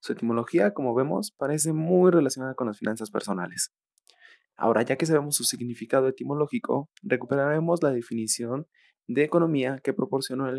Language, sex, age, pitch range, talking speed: Spanish, male, 20-39, 120-150 Hz, 145 wpm